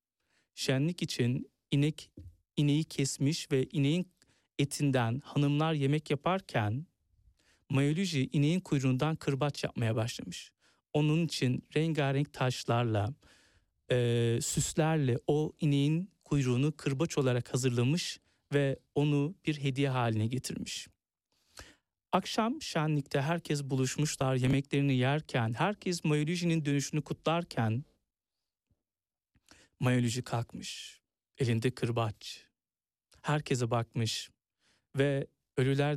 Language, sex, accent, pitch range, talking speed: Turkish, male, native, 120-150 Hz, 90 wpm